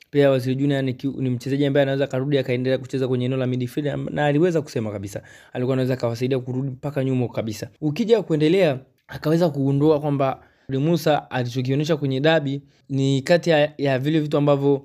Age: 20-39